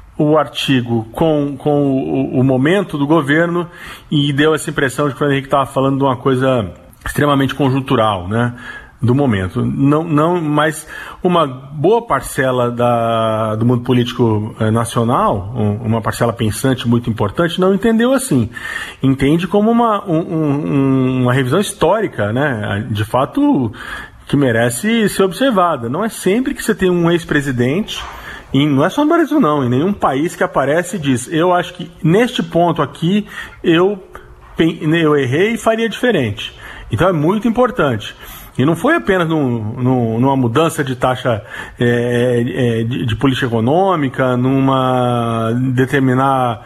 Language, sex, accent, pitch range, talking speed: Portuguese, male, Brazilian, 125-170 Hz, 150 wpm